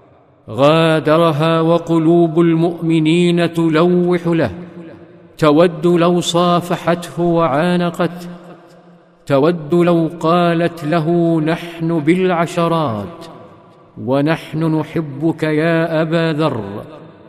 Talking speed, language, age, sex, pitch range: 70 wpm, Arabic, 50-69, male, 150-170 Hz